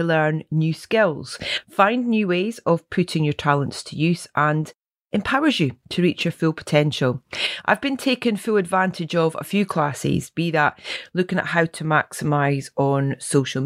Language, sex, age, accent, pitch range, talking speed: English, female, 30-49, British, 150-200 Hz, 165 wpm